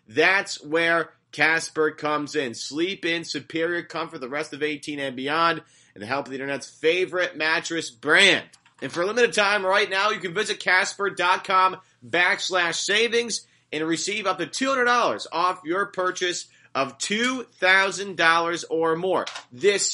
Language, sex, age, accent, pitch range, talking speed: English, male, 30-49, American, 135-190 Hz, 150 wpm